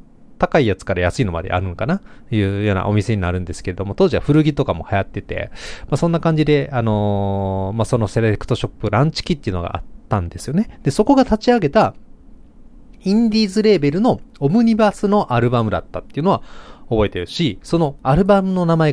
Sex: male